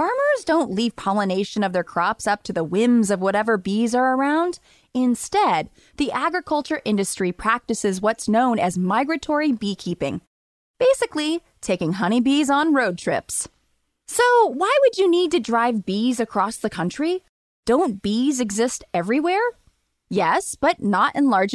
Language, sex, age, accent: English, female, 20-39, American